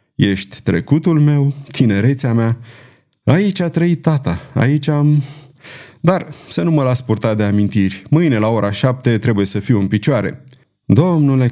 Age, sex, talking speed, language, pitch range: 30-49, male, 150 wpm, Romanian, 110-150 Hz